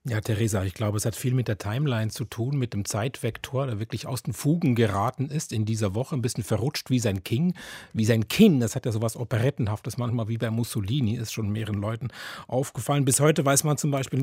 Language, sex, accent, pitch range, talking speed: German, male, German, 110-140 Hz, 230 wpm